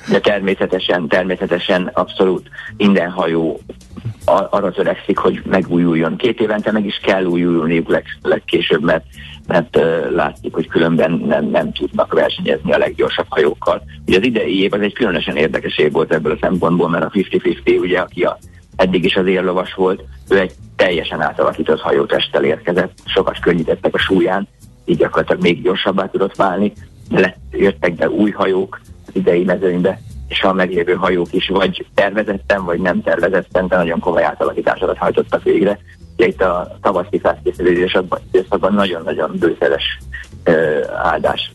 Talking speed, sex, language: 145 wpm, male, Hungarian